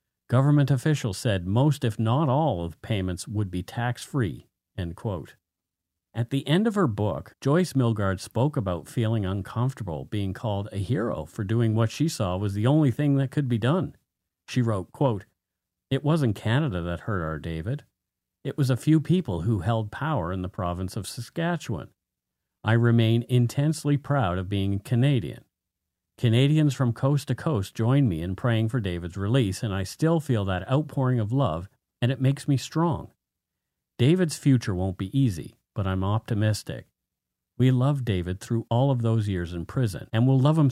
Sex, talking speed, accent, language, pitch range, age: male, 175 wpm, American, English, 95-135 Hz, 50-69